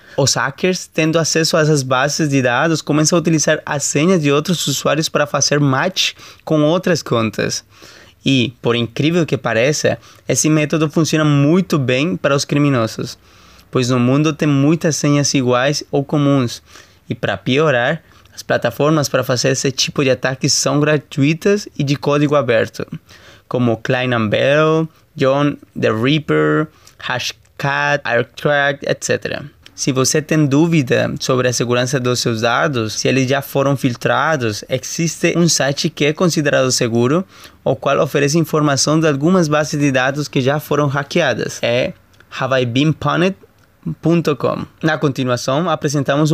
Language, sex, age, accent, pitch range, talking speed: Portuguese, male, 20-39, Brazilian, 125-155 Hz, 145 wpm